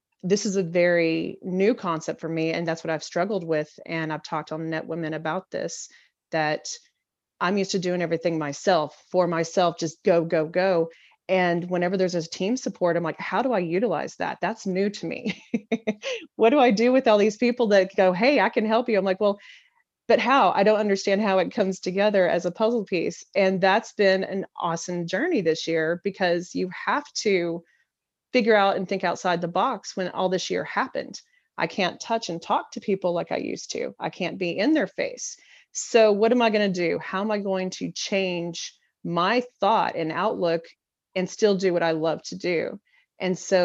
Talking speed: 210 wpm